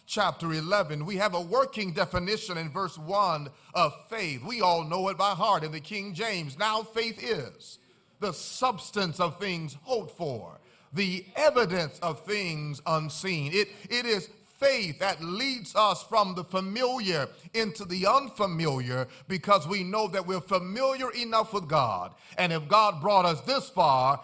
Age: 40-59